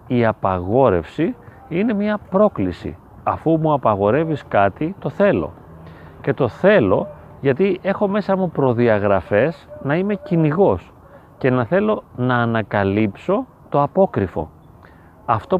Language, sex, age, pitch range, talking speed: Greek, male, 30-49, 110-185 Hz, 115 wpm